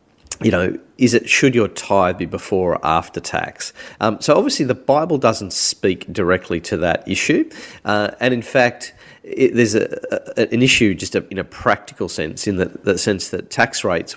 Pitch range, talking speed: 85-115 Hz, 195 wpm